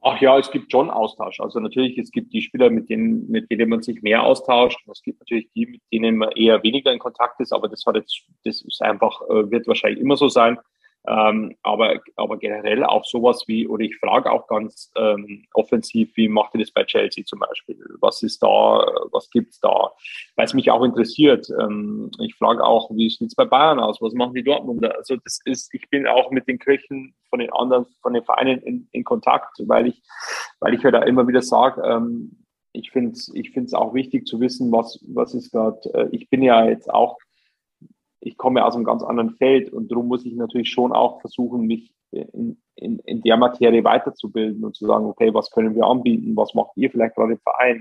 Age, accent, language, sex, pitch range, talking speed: 30-49, German, German, male, 115-135 Hz, 220 wpm